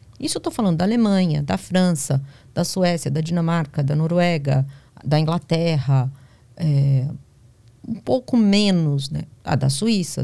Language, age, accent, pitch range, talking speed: Portuguese, 40-59, Brazilian, 140-190 Hz, 135 wpm